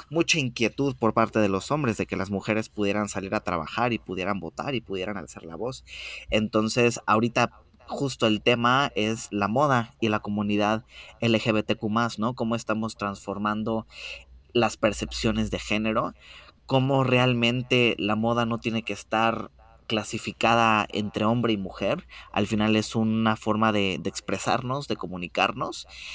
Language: Spanish